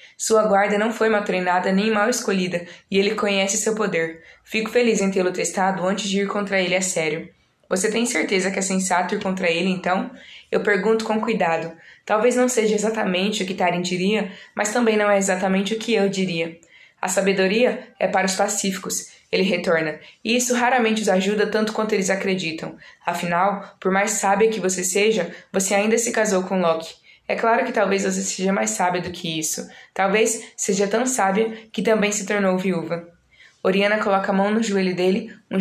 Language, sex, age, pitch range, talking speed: Portuguese, female, 20-39, 185-215 Hz, 195 wpm